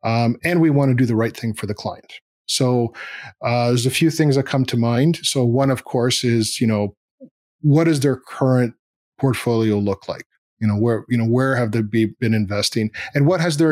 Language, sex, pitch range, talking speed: English, male, 115-145 Hz, 220 wpm